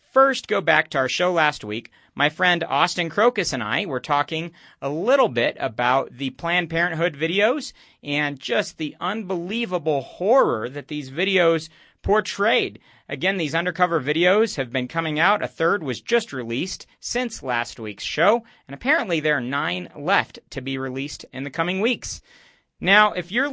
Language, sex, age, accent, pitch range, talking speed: English, male, 40-59, American, 140-195 Hz, 170 wpm